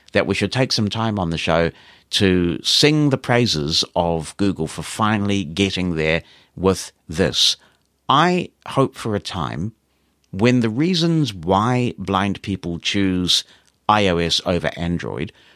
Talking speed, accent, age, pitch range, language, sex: 140 wpm, British, 50-69, 85-125 Hz, English, male